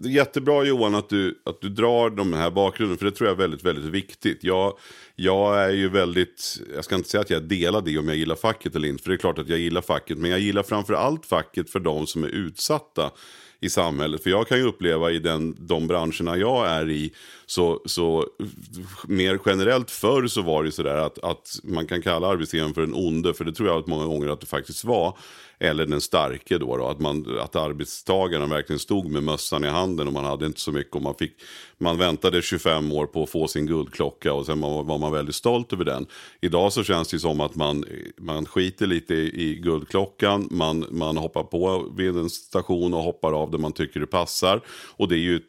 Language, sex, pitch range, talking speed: Swedish, male, 75-95 Hz, 230 wpm